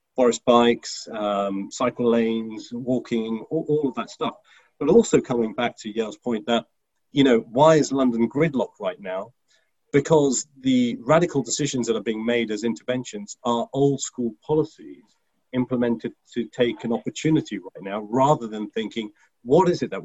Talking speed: 160 wpm